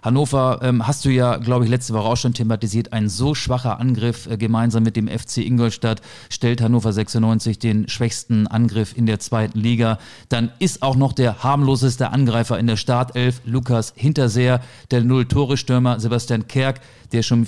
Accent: German